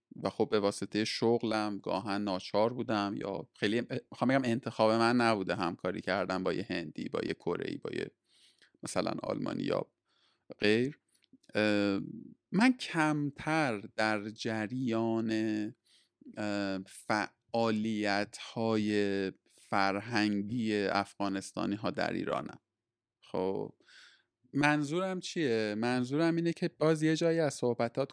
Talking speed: 110 wpm